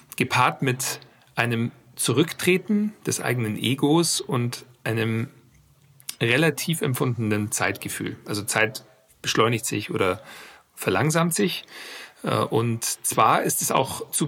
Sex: male